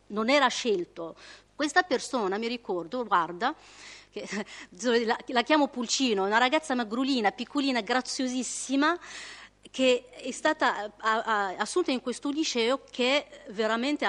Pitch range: 205-270 Hz